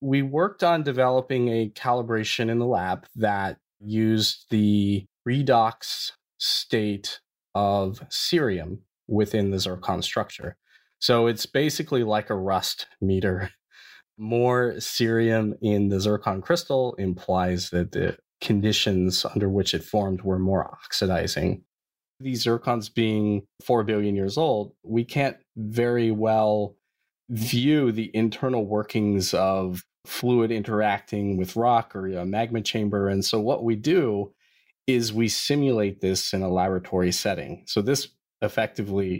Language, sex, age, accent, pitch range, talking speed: English, male, 30-49, American, 95-115 Hz, 130 wpm